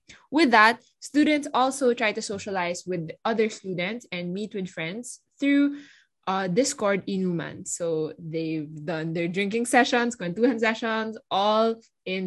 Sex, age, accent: female, 20-39, Filipino